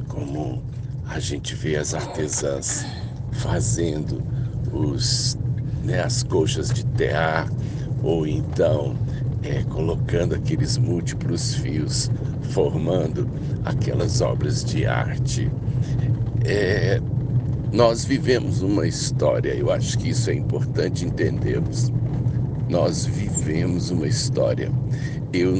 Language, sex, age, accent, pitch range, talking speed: Portuguese, male, 60-79, Brazilian, 120-130 Hz, 90 wpm